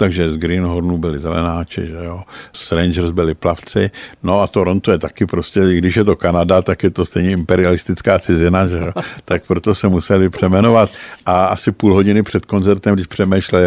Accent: native